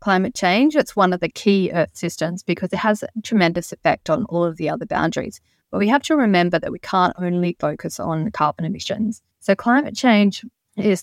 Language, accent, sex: English, Australian, female